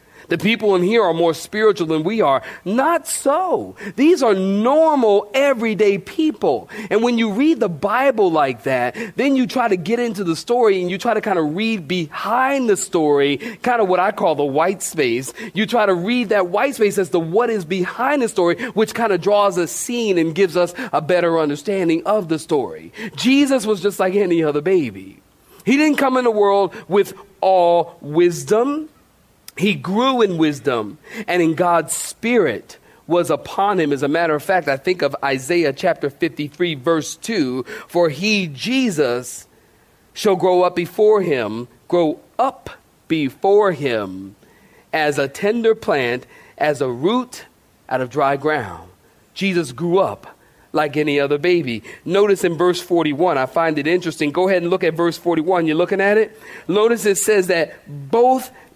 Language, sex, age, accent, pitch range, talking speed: English, male, 40-59, American, 160-220 Hz, 180 wpm